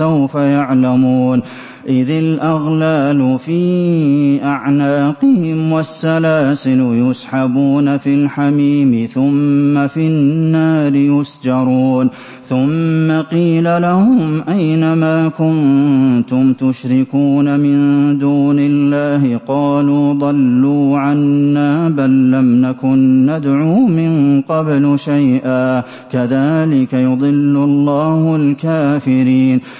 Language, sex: English, male